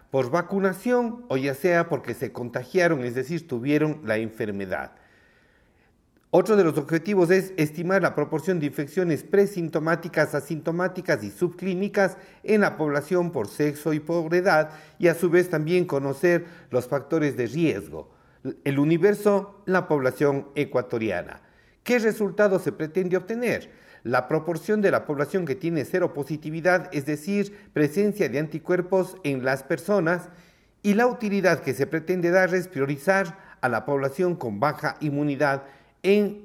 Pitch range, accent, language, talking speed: 140-185 Hz, Mexican, Spanish, 145 wpm